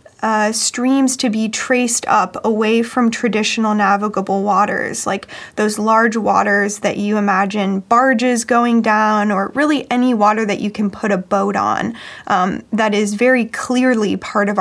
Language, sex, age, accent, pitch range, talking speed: English, female, 20-39, American, 210-245 Hz, 160 wpm